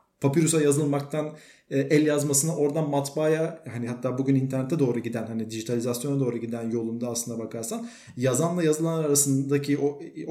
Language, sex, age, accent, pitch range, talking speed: Turkish, male, 40-59, native, 125-165 Hz, 135 wpm